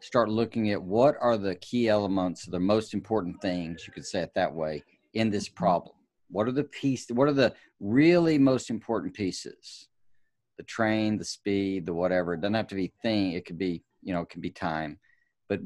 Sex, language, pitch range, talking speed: male, English, 95-120 Hz, 205 wpm